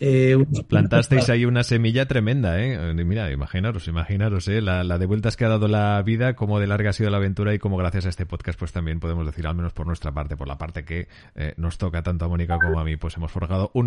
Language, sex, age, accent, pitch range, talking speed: Spanish, male, 30-49, Spanish, 95-125 Hz, 250 wpm